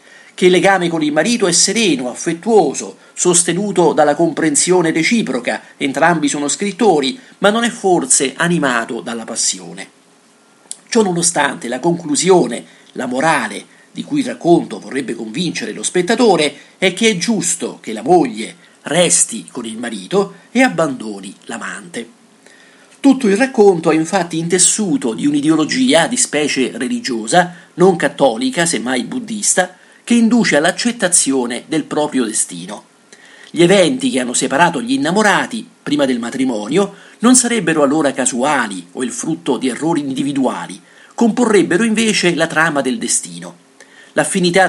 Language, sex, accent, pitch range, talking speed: Italian, male, native, 155-225 Hz, 135 wpm